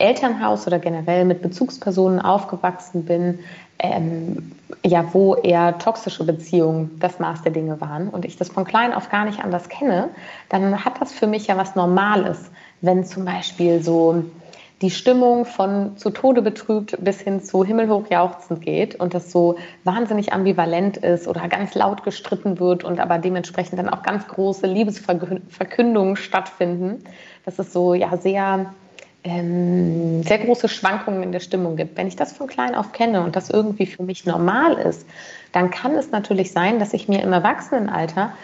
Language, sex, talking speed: German, female, 165 wpm